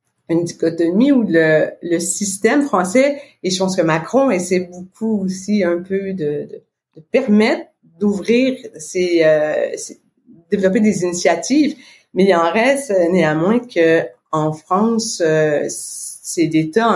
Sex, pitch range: female, 165-210 Hz